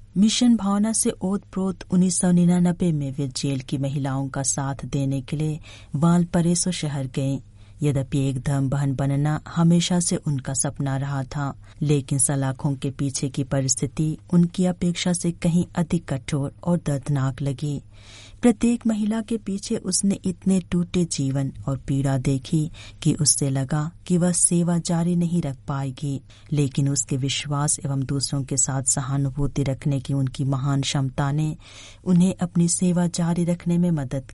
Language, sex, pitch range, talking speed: Hindi, female, 135-175 Hz, 150 wpm